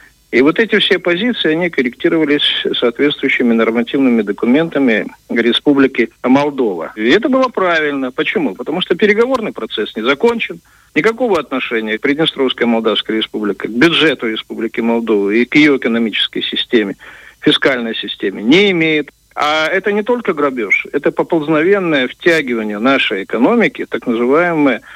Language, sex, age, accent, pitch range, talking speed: Russian, male, 50-69, native, 120-160 Hz, 125 wpm